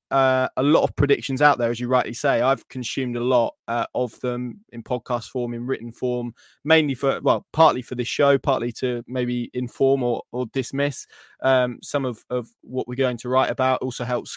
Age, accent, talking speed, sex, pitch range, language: 20-39, British, 210 wpm, male, 120-145 Hz, English